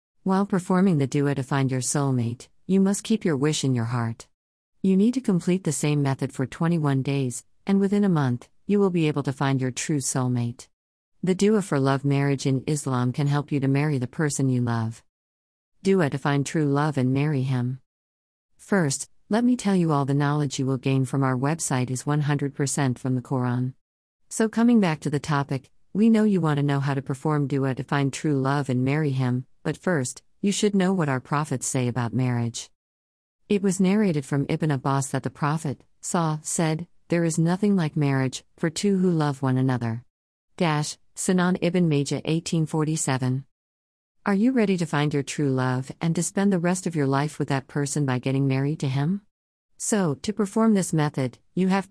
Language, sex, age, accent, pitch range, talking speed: English, female, 50-69, American, 130-175 Hz, 200 wpm